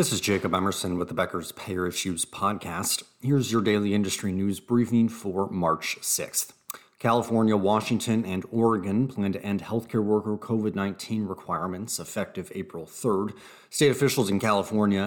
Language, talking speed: English, 145 wpm